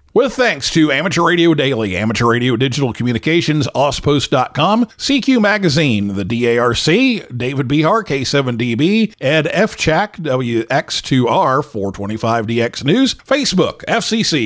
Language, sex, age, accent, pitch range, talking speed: English, male, 50-69, American, 125-200 Hz, 105 wpm